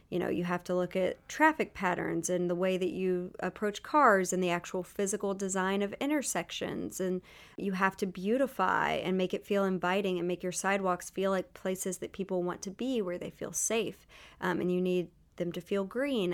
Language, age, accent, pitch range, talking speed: English, 30-49, American, 175-200 Hz, 210 wpm